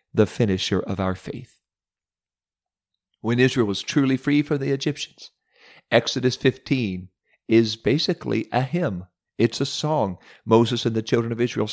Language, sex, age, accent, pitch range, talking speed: English, male, 50-69, American, 110-150 Hz, 145 wpm